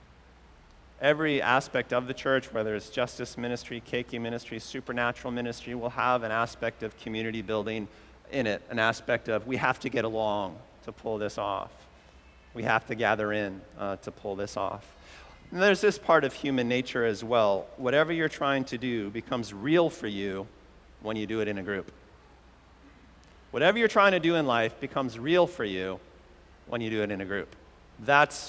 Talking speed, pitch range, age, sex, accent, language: 185 wpm, 105-135 Hz, 40-59, male, American, English